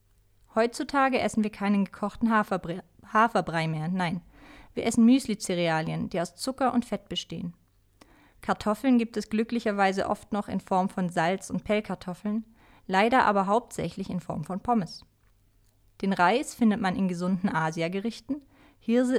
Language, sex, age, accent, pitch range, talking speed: German, female, 30-49, German, 175-230 Hz, 140 wpm